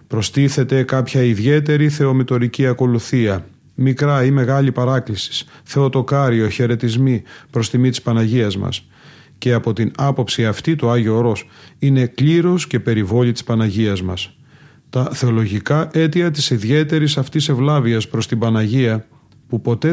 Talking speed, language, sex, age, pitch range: 130 wpm, Greek, male, 30-49, 115-135 Hz